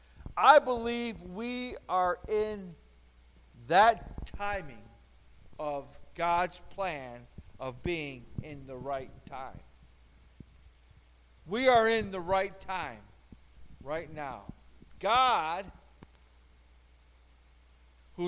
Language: English